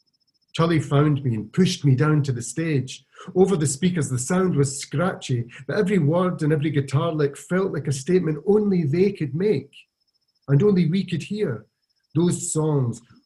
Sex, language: male, English